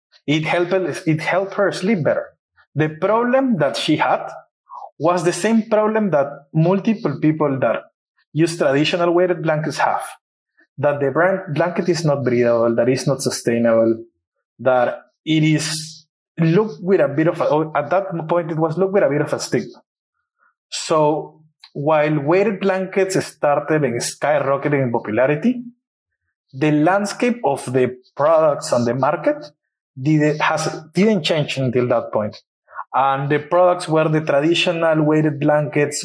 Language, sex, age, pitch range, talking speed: English, male, 30-49, 140-180 Hz, 150 wpm